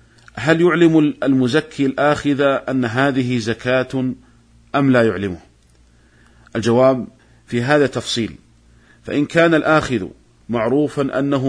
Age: 50-69